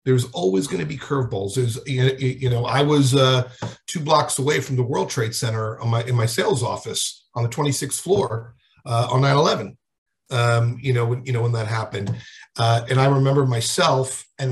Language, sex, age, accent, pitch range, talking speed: English, male, 50-69, American, 115-140 Hz, 200 wpm